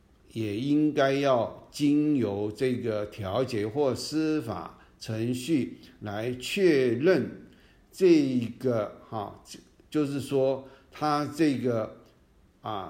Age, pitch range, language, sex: 50-69, 110-145 Hz, Chinese, male